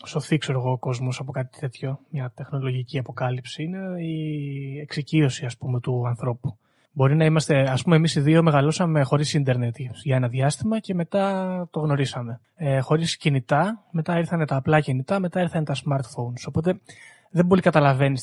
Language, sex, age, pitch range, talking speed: Greek, male, 20-39, 135-165 Hz, 165 wpm